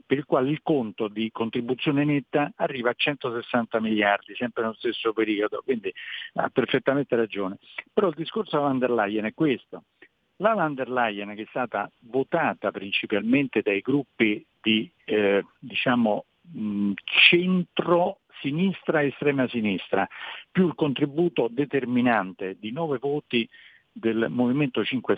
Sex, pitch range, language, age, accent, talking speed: male, 110-150 Hz, Italian, 50-69, native, 130 wpm